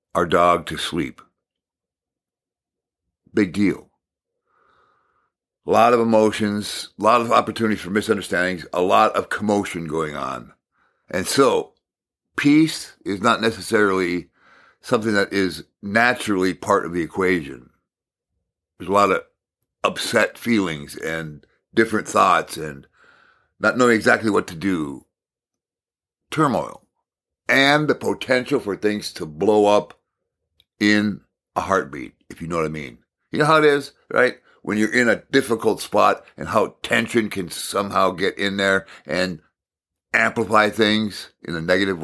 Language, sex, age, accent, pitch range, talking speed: English, male, 60-79, American, 95-115 Hz, 135 wpm